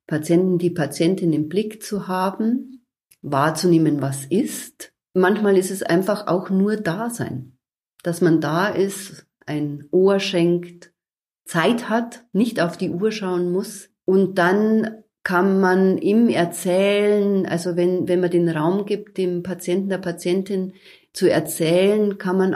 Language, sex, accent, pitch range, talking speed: German, female, German, 165-200 Hz, 145 wpm